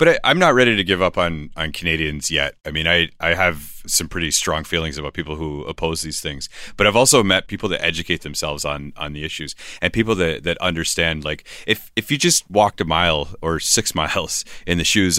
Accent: American